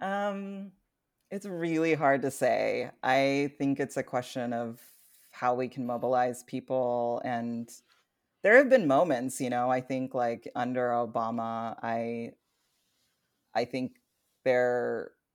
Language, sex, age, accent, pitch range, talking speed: English, female, 30-49, American, 115-130 Hz, 130 wpm